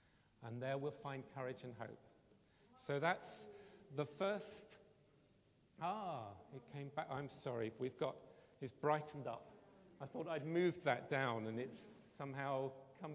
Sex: male